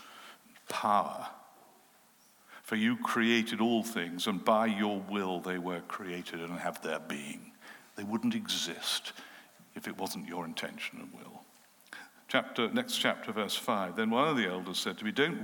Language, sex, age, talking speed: English, male, 60-79, 160 wpm